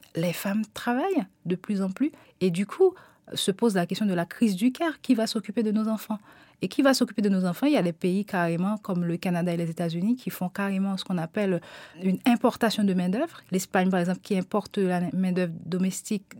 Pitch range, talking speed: 170-210 Hz, 225 wpm